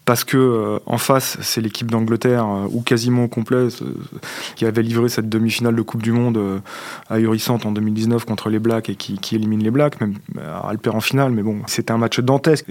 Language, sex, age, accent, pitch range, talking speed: French, male, 20-39, French, 110-130 Hz, 215 wpm